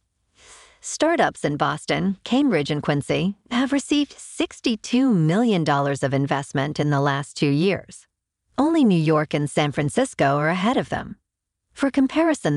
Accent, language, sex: American, English, female